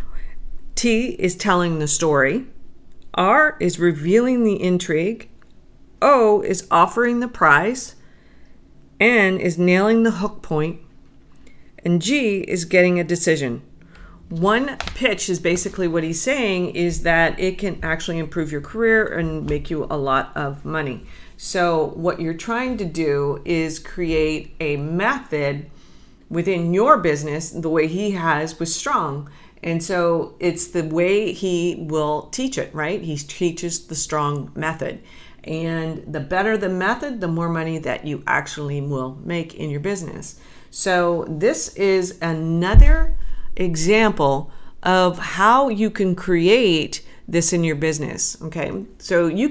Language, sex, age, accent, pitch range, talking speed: English, female, 40-59, American, 155-190 Hz, 140 wpm